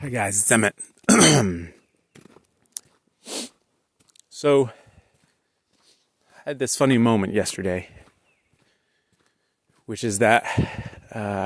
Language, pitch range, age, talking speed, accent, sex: English, 90-110 Hz, 30-49, 80 wpm, American, male